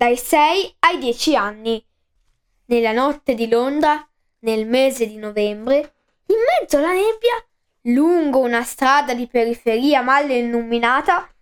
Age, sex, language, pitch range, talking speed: 10-29, female, Italian, 230-315 Hz, 125 wpm